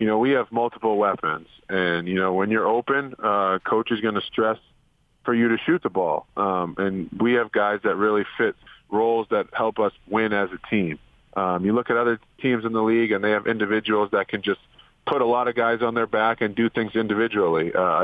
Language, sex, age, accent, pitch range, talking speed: English, male, 40-59, American, 105-125 Hz, 230 wpm